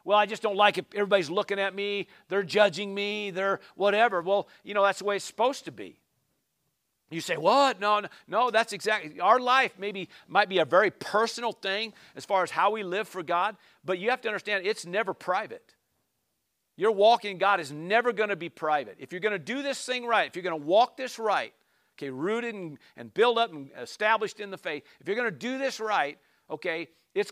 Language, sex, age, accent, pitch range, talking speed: English, male, 50-69, American, 155-210 Hz, 225 wpm